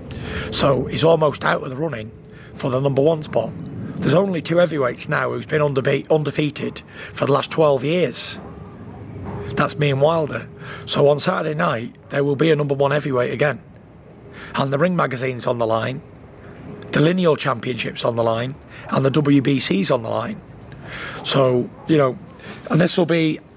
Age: 40-59